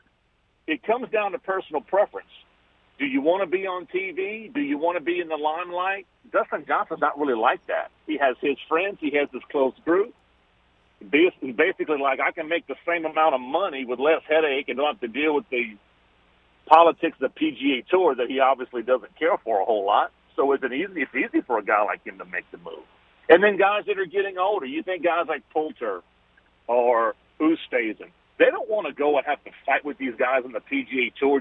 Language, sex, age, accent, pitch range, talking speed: English, male, 50-69, American, 135-185 Hz, 220 wpm